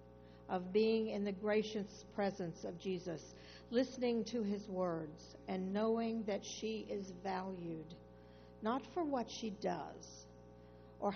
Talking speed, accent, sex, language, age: 130 wpm, American, female, English, 60-79